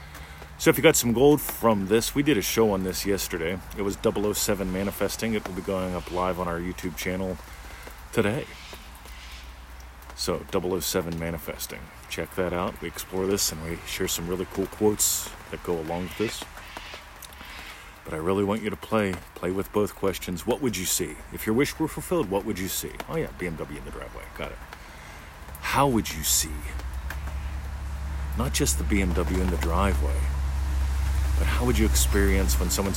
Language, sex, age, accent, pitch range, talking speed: English, male, 40-59, American, 70-100 Hz, 185 wpm